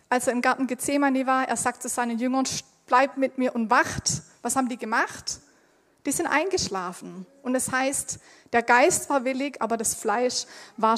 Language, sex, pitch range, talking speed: German, female, 230-290 Hz, 185 wpm